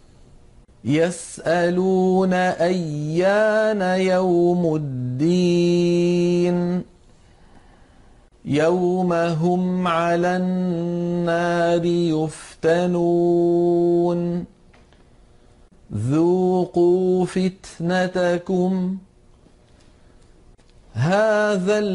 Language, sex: Arabic, male